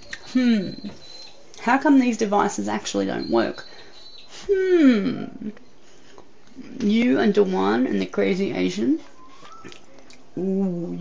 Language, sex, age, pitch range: English, female, 30-49, 155-250 Hz